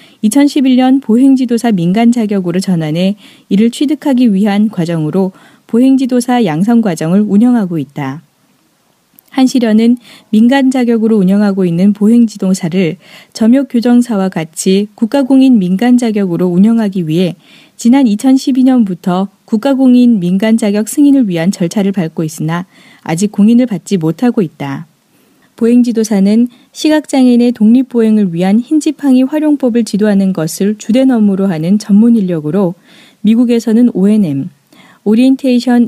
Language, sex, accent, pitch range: Korean, female, native, 190-245 Hz